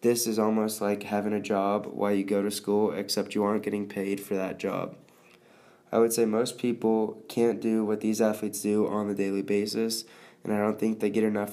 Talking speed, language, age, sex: 220 wpm, English, 20-39, male